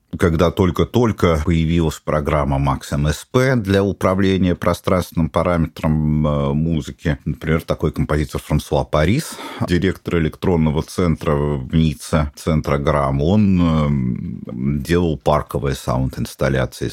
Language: Russian